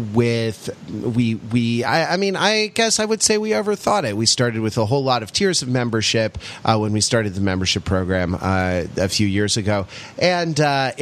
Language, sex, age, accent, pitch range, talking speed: English, male, 30-49, American, 100-145 Hz, 210 wpm